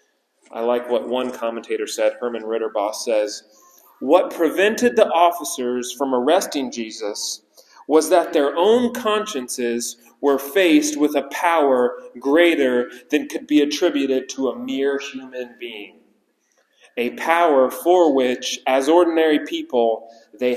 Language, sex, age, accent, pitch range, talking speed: English, male, 30-49, American, 110-140 Hz, 130 wpm